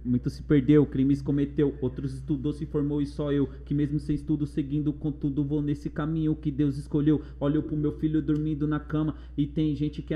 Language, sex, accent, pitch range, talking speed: Portuguese, male, Brazilian, 145-155 Hz, 215 wpm